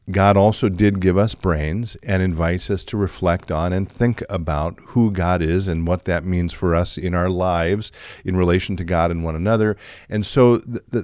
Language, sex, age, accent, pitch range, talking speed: English, male, 50-69, American, 85-110 Hz, 205 wpm